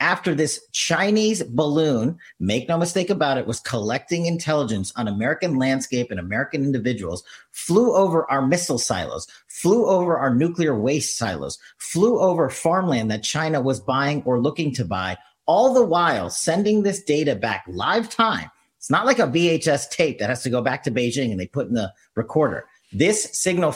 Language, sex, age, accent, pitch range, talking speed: English, male, 40-59, American, 125-170 Hz, 175 wpm